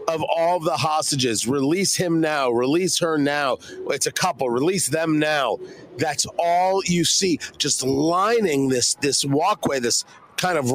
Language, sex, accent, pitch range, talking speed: English, male, American, 145-195 Hz, 155 wpm